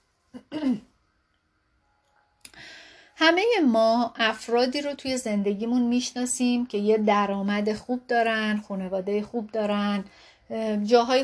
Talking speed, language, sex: 85 wpm, Persian, female